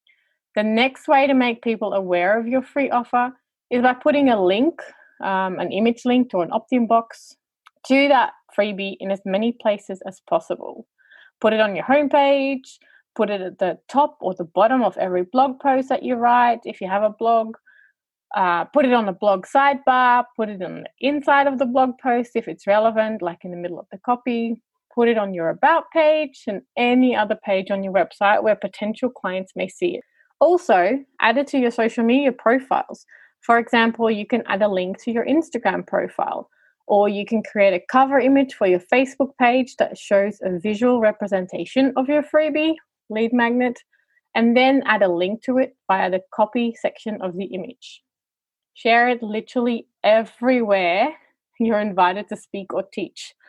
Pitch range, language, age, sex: 205-260 Hz, English, 30-49, female